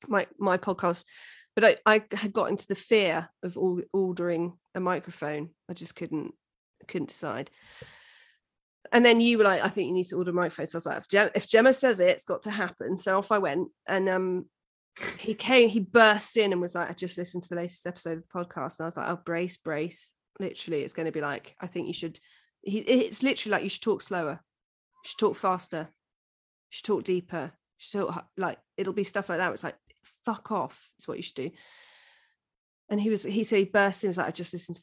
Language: English